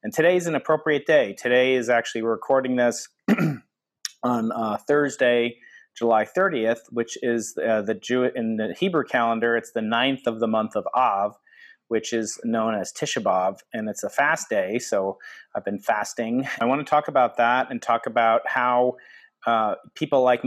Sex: male